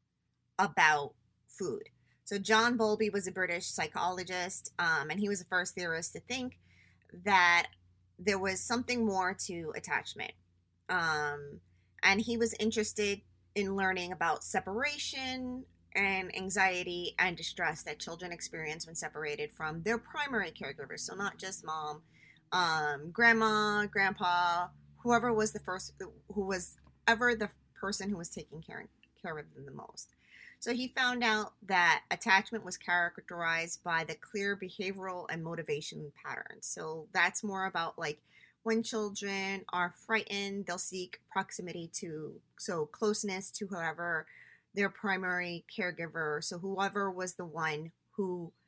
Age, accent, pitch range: 30-49, American, 165-210 Hz